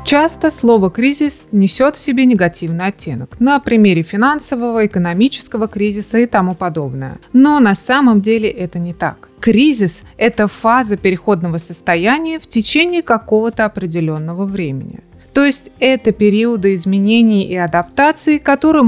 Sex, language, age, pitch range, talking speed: female, Russian, 20-39, 190-250 Hz, 130 wpm